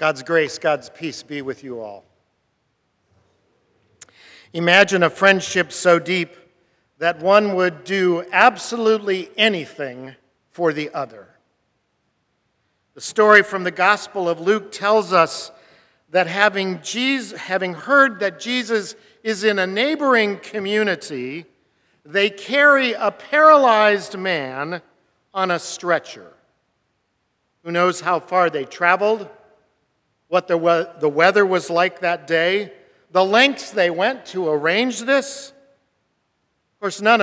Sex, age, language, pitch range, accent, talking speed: male, 50-69, English, 165-215 Hz, American, 120 wpm